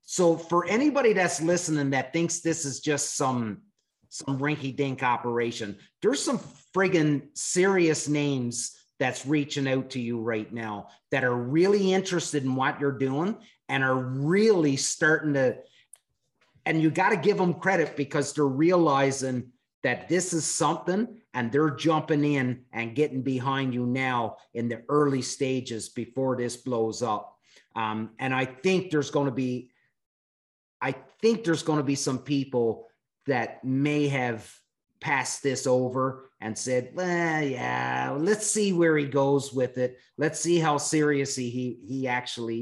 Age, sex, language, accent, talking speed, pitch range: 30-49, male, English, American, 155 wpm, 125-160 Hz